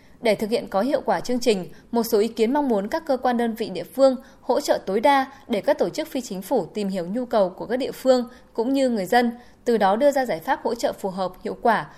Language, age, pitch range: Vietnamese, 10-29, 200-265 Hz